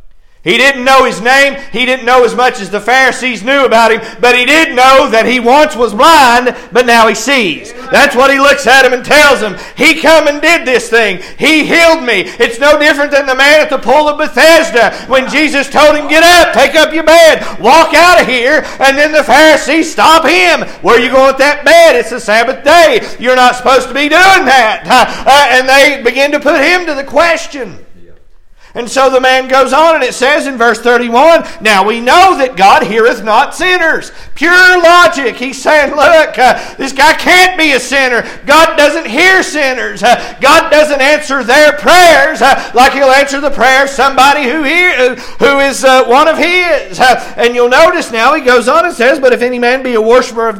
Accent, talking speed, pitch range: American, 215 wpm, 250-310 Hz